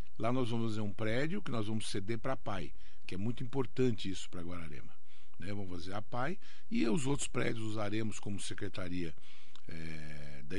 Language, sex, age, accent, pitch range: Japanese, male, 50-69, Brazilian, 100-125 Hz